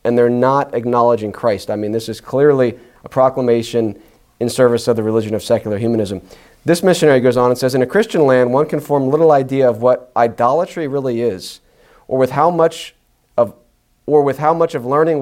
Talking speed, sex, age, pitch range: 200 wpm, male, 40-59, 115-145 Hz